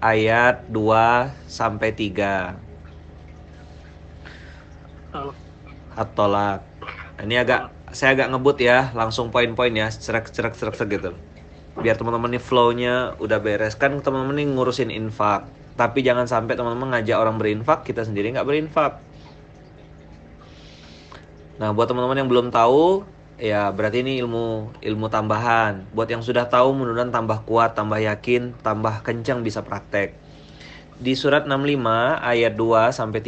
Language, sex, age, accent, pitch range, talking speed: Indonesian, male, 30-49, native, 105-130 Hz, 125 wpm